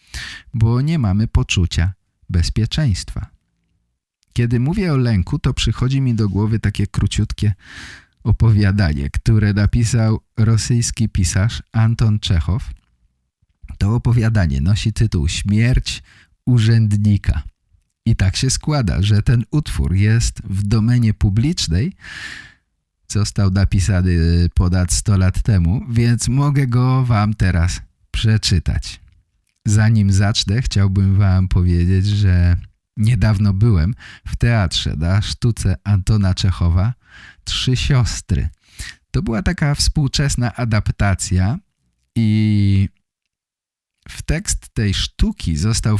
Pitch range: 95-115 Hz